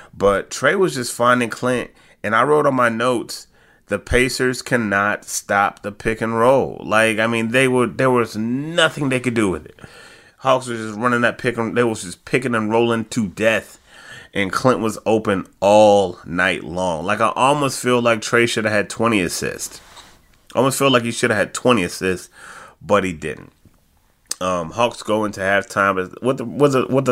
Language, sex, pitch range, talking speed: English, male, 100-120 Hz, 185 wpm